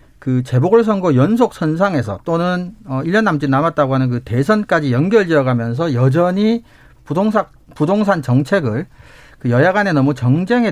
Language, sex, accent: Korean, male, native